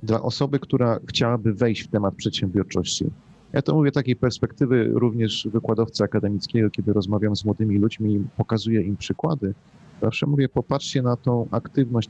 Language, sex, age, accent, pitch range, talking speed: Polish, male, 40-59, native, 105-135 Hz, 160 wpm